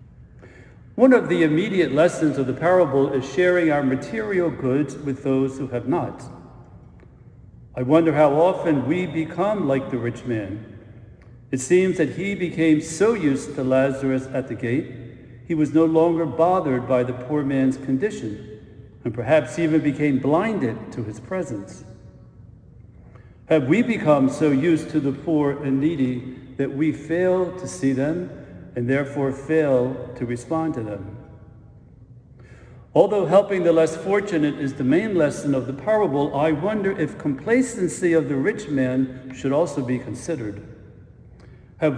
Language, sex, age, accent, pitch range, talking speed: English, male, 60-79, American, 125-160 Hz, 150 wpm